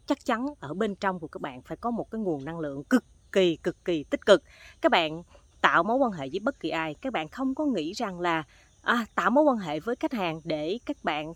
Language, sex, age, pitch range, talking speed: Vietnamese, female, 20-39, 160-245 Hz, 255 wpm